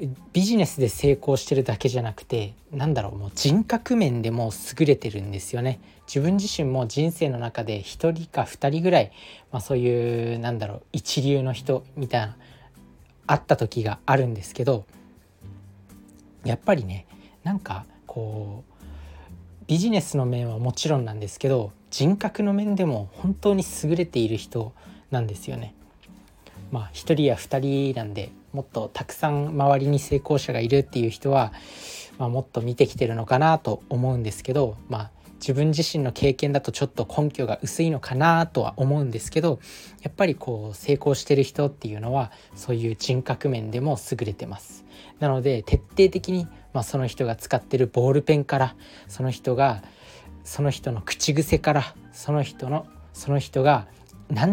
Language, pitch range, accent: Japanese, 110-145 Hz, native